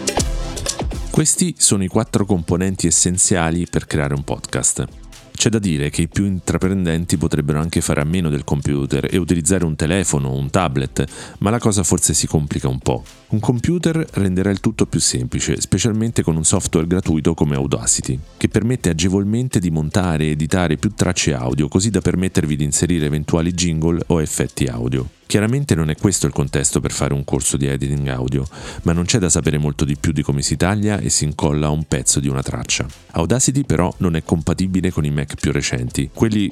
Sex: male